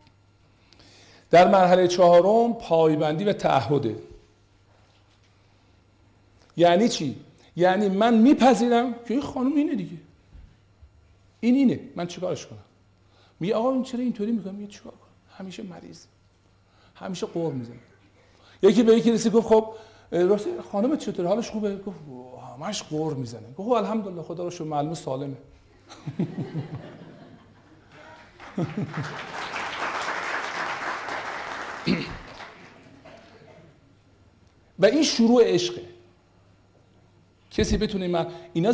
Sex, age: male, 50-69